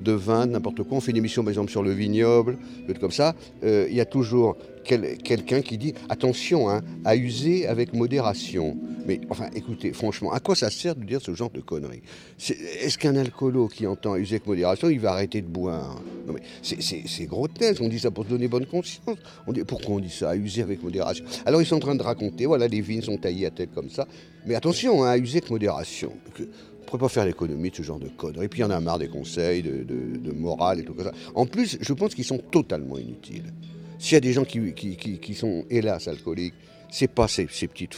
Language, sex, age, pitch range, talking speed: French, male, 50-69, 95-130 Hz, 255 wpm